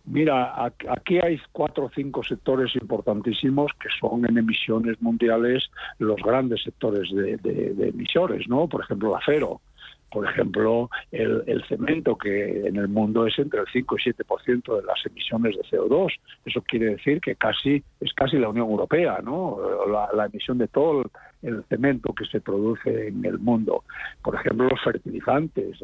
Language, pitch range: Spanish, 110-135 Hz